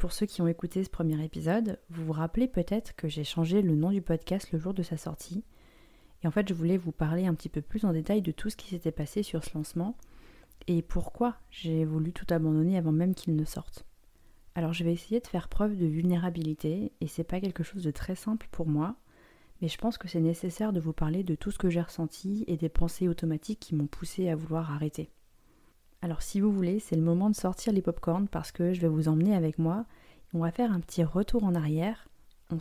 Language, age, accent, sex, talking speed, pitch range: French, 30-49, French, female, 235 wpm, 160-195 Hz